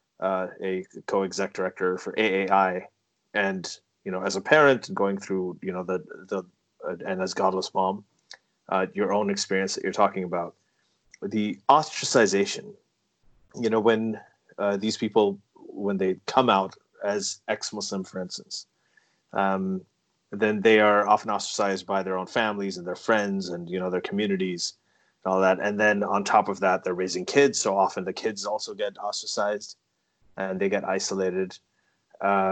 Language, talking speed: English, 165 wpm